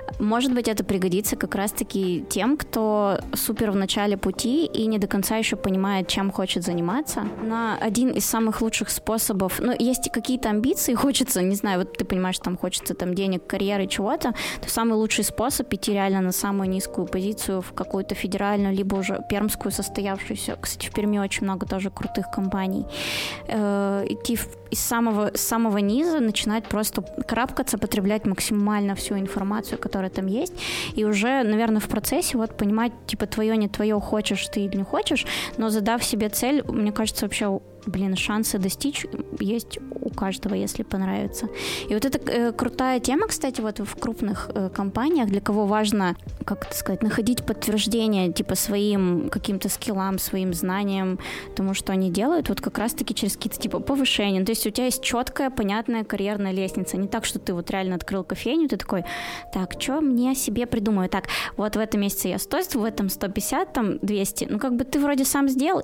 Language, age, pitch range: Russian, 20-39, 195-235 Hz